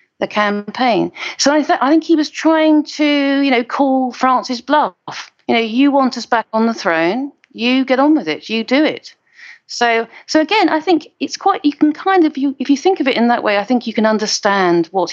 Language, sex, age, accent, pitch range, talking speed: English, female, 40-59, British, 180-275 Hz, 235 wpm